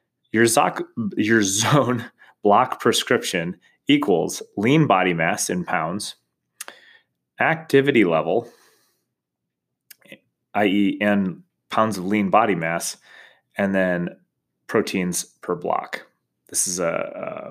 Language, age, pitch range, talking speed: English, 30-49, 95-135 Hz, 100 wpm